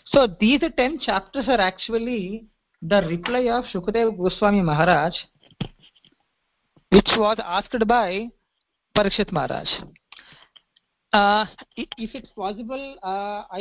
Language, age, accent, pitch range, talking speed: English, 50-69, Indian, 185-235 Hz, 100 wpm